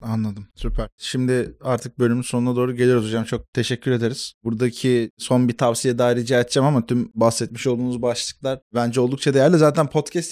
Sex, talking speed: male, 170 wpm